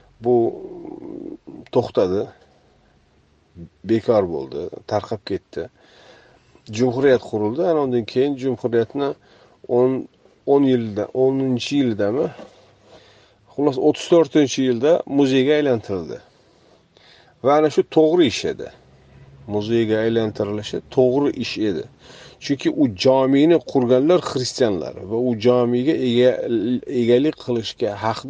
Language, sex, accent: Russian, male, Turkish